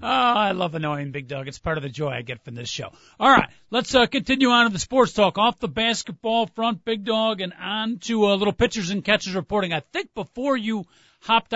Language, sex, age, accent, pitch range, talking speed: English, male, 40-59, American, 170-250 Hz, 245 wpm